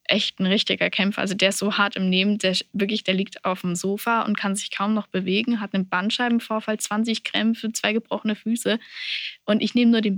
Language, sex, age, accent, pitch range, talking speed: German, female, 10-29, German, 195-225 Hz, 220 wpm